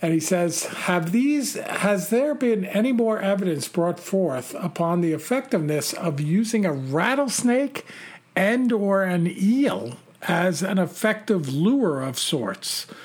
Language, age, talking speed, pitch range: English, 50-69, 140 wpm, 160-205 Hz